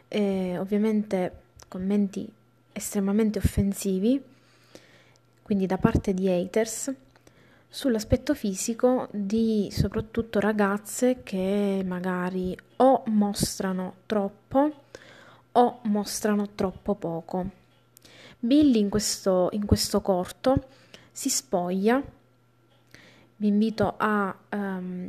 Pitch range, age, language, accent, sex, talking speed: 180-220 Hz, 20-39, Italian, native, female, 85 wpm